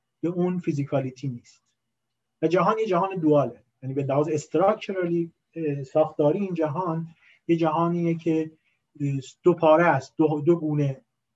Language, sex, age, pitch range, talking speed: Persian, male, 30-49, 140-180 Hz, 125 wpm